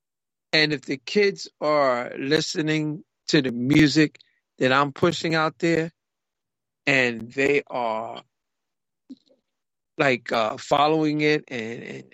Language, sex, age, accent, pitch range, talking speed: English, male, 40-59, American, 140-170 Hz, 110 wpm